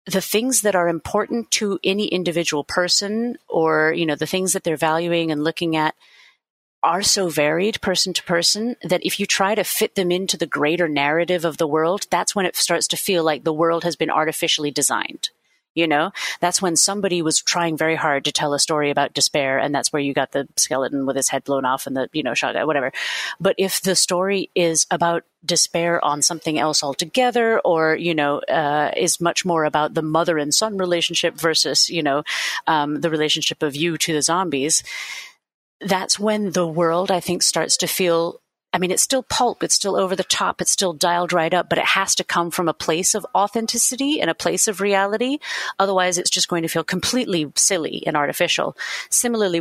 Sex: female